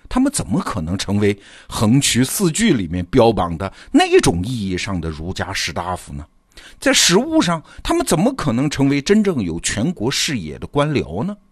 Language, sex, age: Chinese, male, 50-69